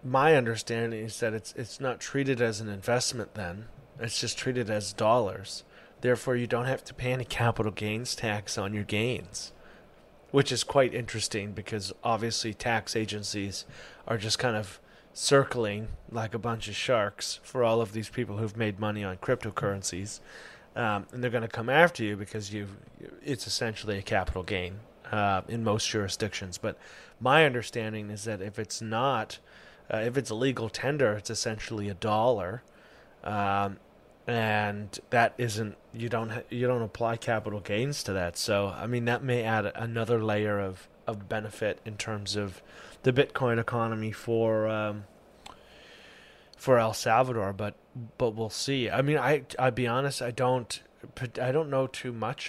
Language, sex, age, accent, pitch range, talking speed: English, male, 30-49, American, 105-125 Hz, 170 wpm